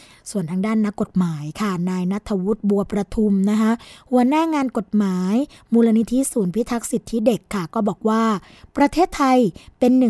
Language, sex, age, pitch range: Thai, female, 20-39, 195-240 Hz